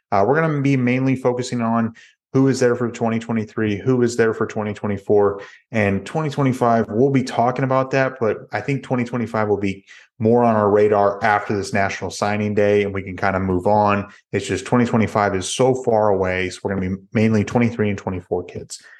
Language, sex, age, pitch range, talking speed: English, male, 30-49, 100-125 Hz, 200 wpm